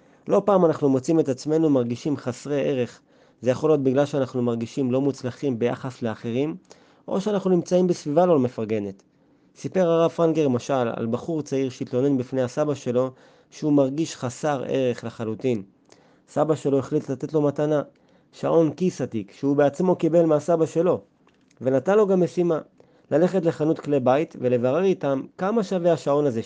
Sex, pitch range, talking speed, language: male, 125-160 Hz, 155 wpm, Hebrew